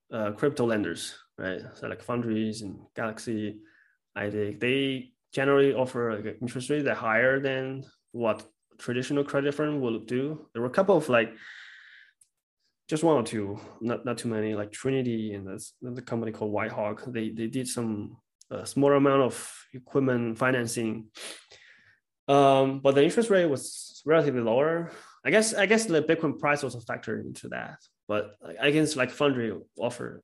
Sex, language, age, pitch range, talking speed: male, English, 20-39, 110-135 Hz, 165 wpm